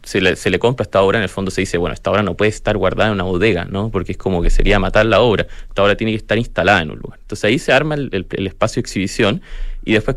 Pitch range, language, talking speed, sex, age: 95-125 Hz, Spanish, 300 wpm, male, 20-39